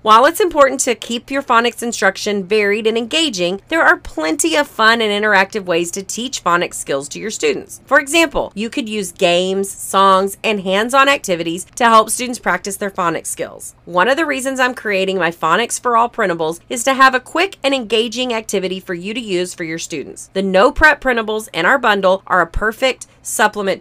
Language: English